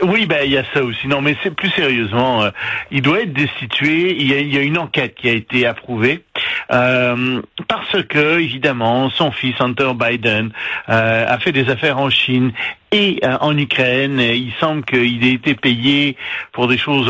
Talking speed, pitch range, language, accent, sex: 195 wpm, 120-150 Hz, French, French, male